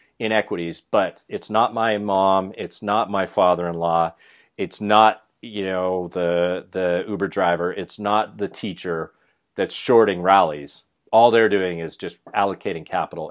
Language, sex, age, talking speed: English, male, 40-59, 145 wpm